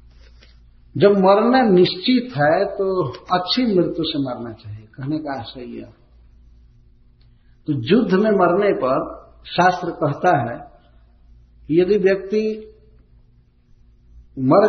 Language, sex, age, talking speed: Hindi, male, 60-79, 100 wpm